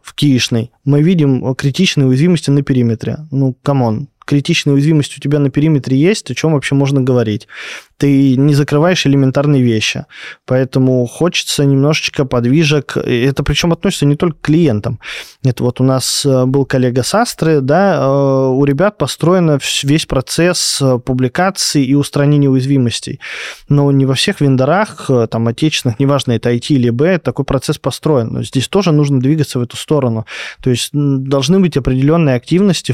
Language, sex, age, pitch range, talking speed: Russian, male, 20-39, 130-150 Hz, 150 wpm